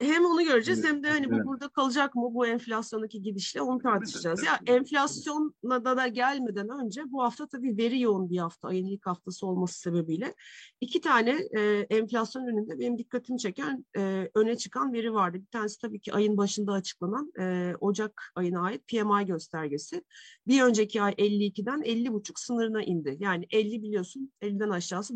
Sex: female